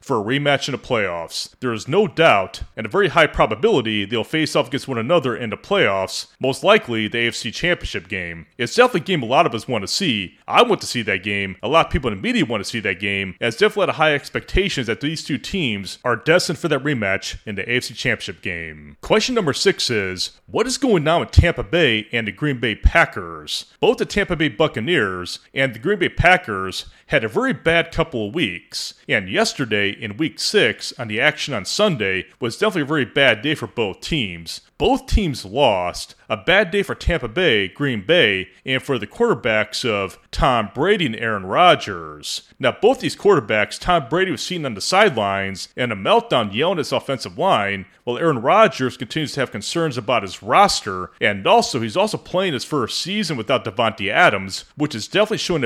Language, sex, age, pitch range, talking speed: English, male, 30-49, 100-165 Hz, 210 wpm